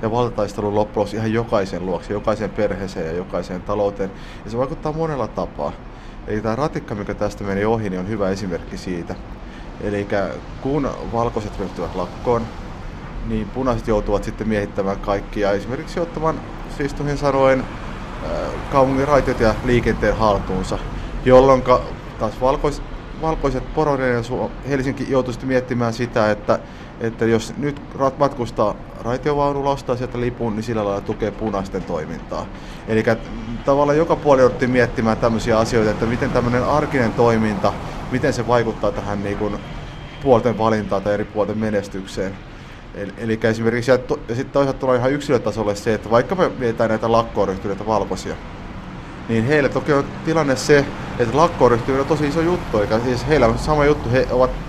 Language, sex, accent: Finnish, male, native